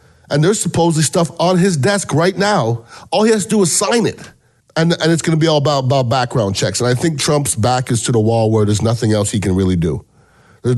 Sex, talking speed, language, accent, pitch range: male, 255 wpm, English, American, 110-150 Hz